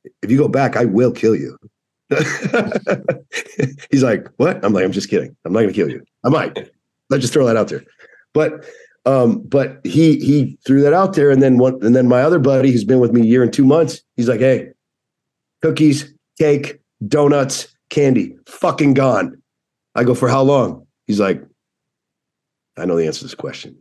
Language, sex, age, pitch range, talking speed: English, male, 50-69, 125-150 Hz, 200 wpm